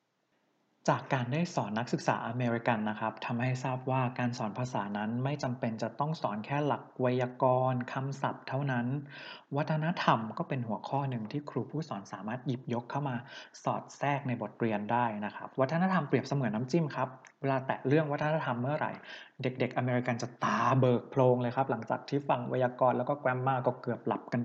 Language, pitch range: Thai, 120-145 Hz